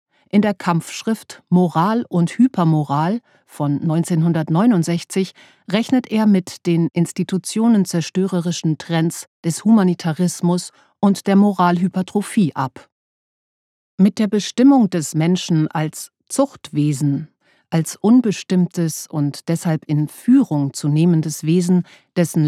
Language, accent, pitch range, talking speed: German, German, 160-205 Hz, 100 wpm